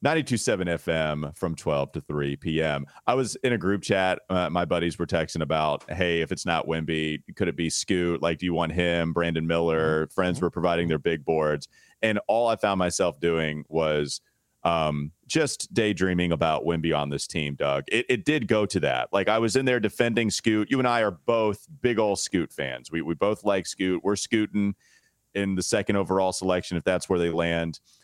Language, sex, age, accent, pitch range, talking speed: English, male, 30-49, American, 85-115 Hz, 205 wpm